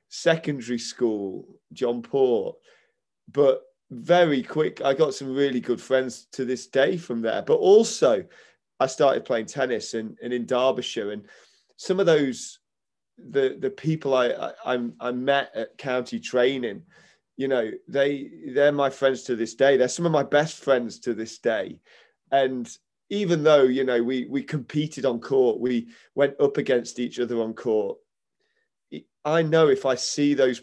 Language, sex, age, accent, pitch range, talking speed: English, male, 20-39, British, 125-170 Hz, 165 wpm